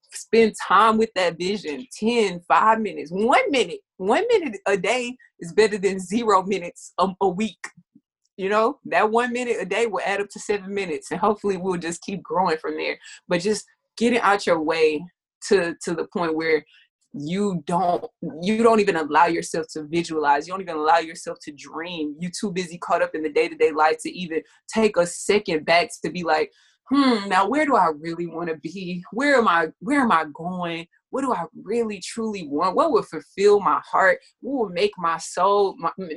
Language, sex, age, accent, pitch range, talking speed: English, female, 20-39, American, 165-225 Hz, 200 wpm